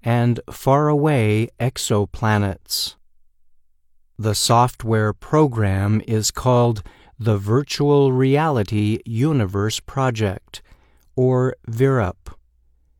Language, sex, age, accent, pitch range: Chinese, male, 50-69, American, 100-125 Hz